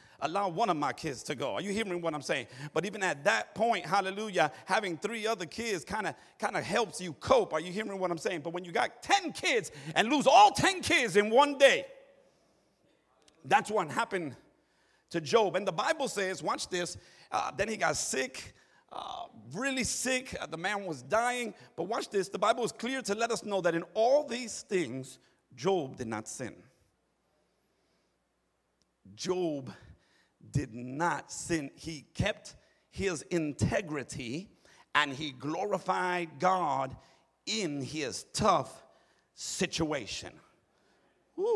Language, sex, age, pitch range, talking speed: English, male, 50-69, 155-220 Hz, 155 wpm